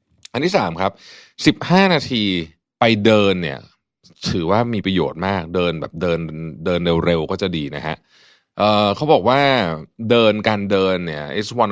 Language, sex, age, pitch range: Thai, male, 30-49, 85-110 Hz